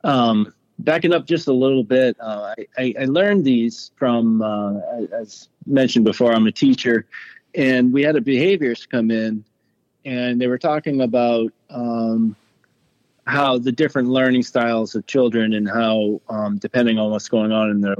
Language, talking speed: English, 170 wpm